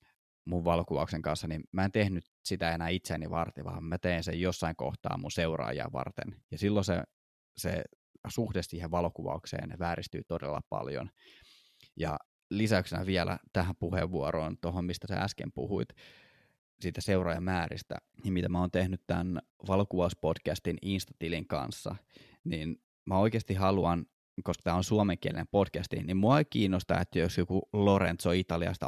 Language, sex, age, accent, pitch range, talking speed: Finnish, male, 20-39, native, 85-100 Hz, 140 wpm